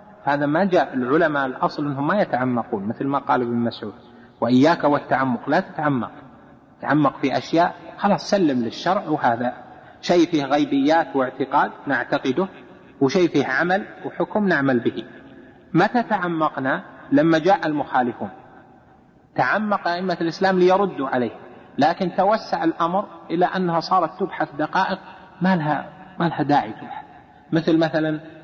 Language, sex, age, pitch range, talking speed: Arabic, male, 30-49, 135-185 Hz, 125 wpm